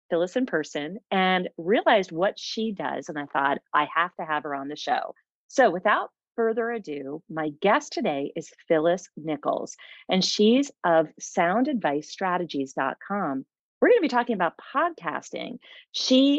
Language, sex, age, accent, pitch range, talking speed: English, female, 40-59, American, 155-230 Hz, 150 wpm